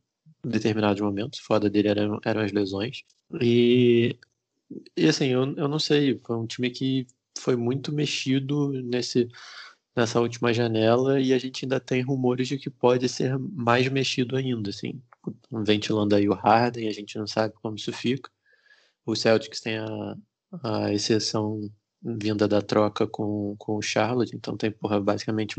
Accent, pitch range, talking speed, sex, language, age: Brazilian, 105-125 Hz, 160 wpm, male, Portuguese, 20-39